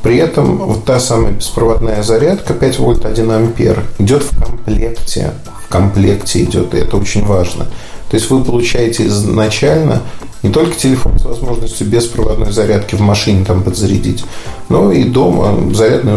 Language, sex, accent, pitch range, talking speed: Russian, male, native, 105-130 Hz, 150 wpm